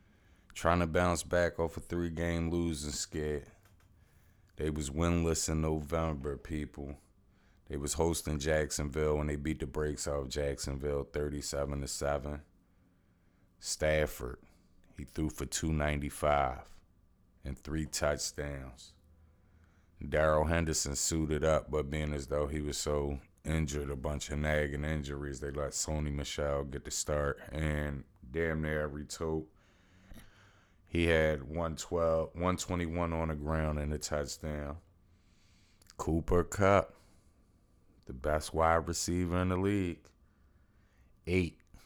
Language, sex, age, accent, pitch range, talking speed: English, male, 30-49, American, 75-85 Hz, 120 wpm